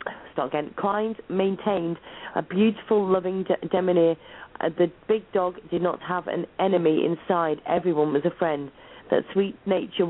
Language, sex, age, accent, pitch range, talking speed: English, female, 40-59, British, 175-200 Hz, 145 wpm